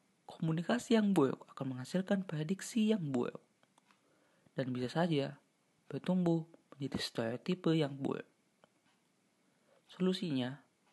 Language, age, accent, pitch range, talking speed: Indonesian, 30-49, native, 135-195 Hz, 95 wpm